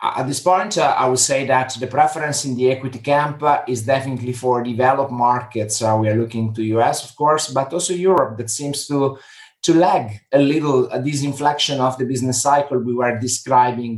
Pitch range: 130-160 Hz